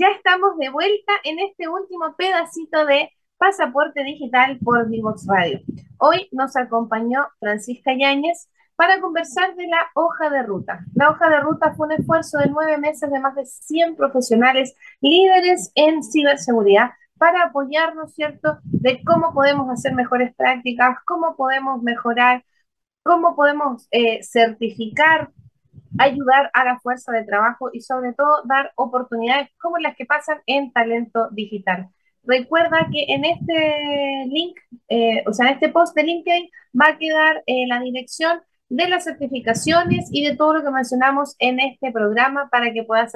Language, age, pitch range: Spanish, 30-49, 255-330 Hz